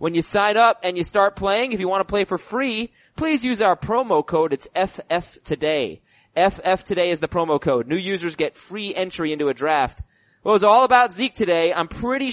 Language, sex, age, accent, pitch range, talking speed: English, male, 20-39, American, 160-220 Hz, 215 wpm